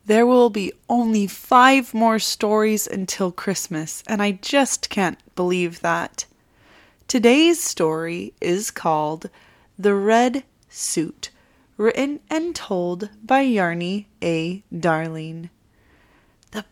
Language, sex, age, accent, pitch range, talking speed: English, female, 20-39, American, 175-225 Hz, 110 wpm